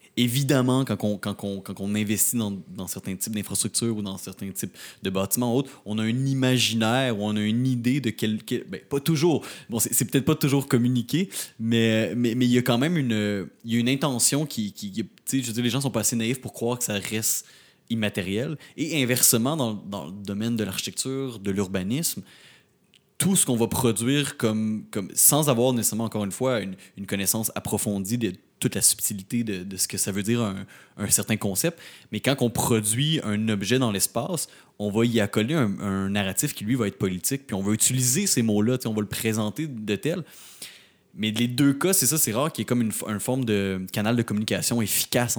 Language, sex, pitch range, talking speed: French, male, 105-130 Hz, 220 wpm